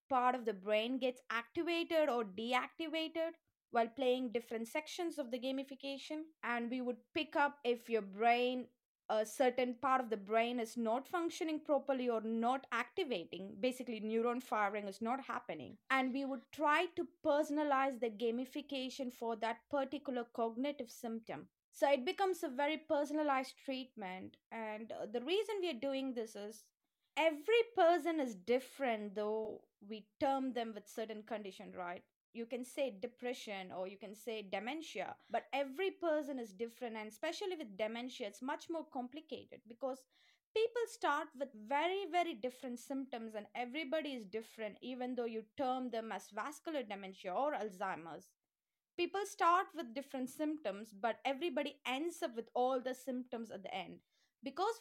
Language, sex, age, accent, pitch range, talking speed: English, female, 20-39, Indian, 230-305 Hz, 155 wpm